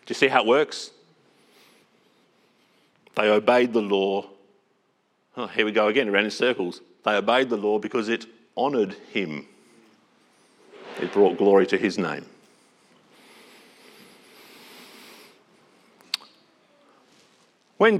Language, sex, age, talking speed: English, male, 50-69, 105 wpm